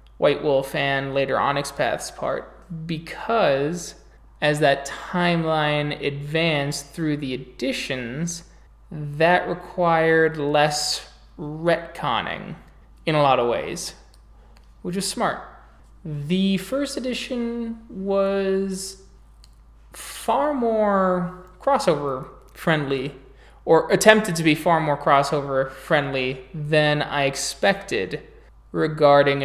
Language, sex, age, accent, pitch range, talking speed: English, male, 20-39, American, 145-180 Hz, 95 wpm